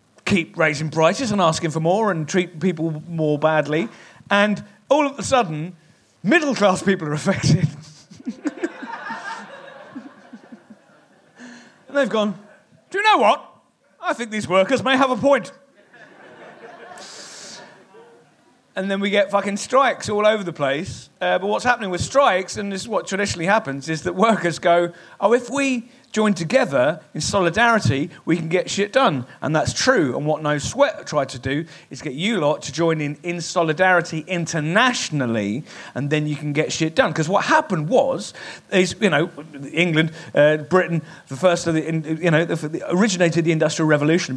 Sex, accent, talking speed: male, British, 165 wpm